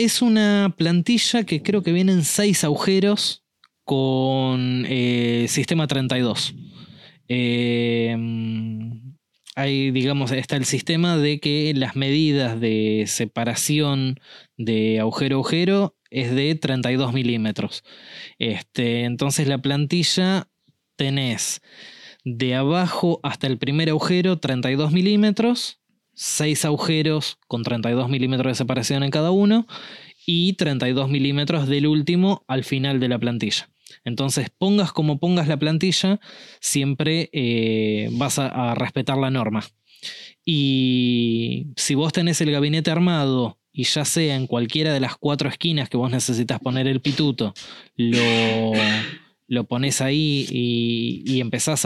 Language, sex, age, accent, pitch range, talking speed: Spanish, male, 20-39, Argentinian, 125-160 Hz, 125 wpm